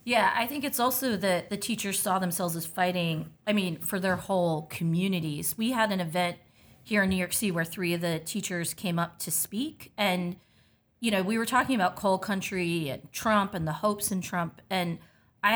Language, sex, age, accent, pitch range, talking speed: English, female, 30-49, American, 170-210 Hz, 210 wpm